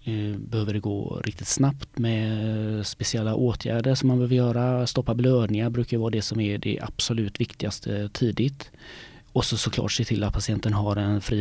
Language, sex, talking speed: Swedish, male, 175 wpm